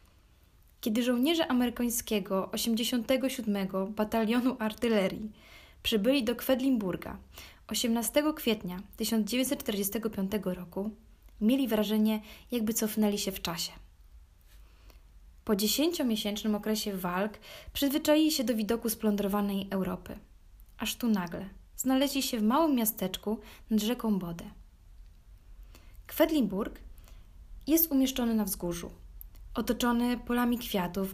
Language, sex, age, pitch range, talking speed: Polish, female, 20-39, 190-245 Hz, 95 wpm